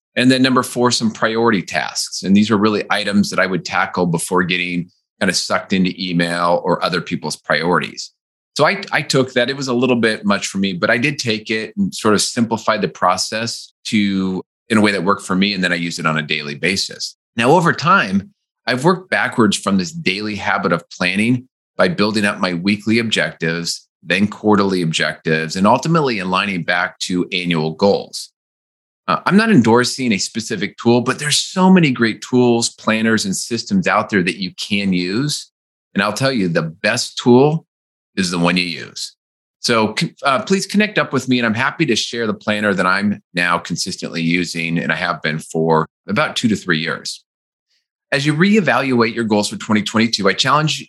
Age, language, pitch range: 30-49, English, 95-125 Hz